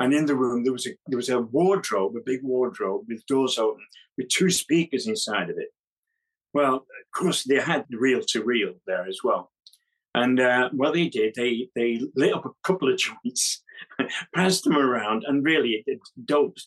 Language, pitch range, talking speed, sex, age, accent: English, 120-160 Hz, 190 wpm, male, 50-69, British